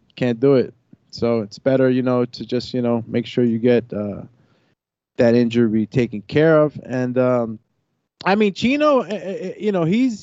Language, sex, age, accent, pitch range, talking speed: English, male, 20-39, American, 125-170 Hz, 180 wpm